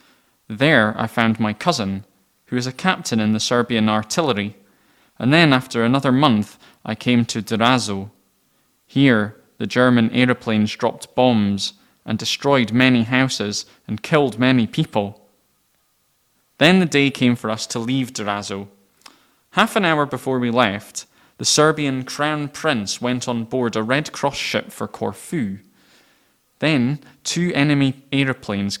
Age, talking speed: 20-39, 140 wpm